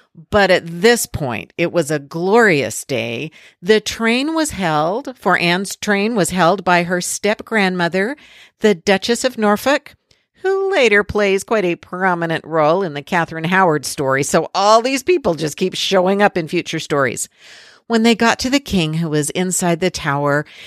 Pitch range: 150-200 Hz